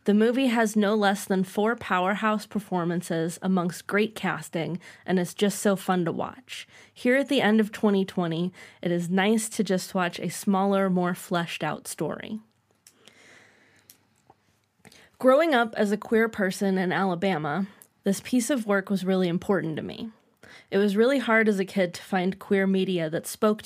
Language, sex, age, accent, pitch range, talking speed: English, female, 20-39, American, 180-215 Hz, 165 wpm